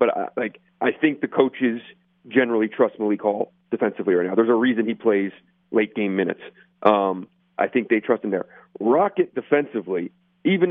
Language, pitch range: English, 115-180 Hz